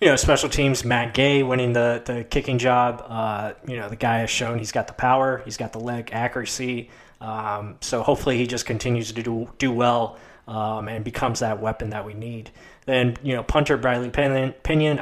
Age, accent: 20-39, American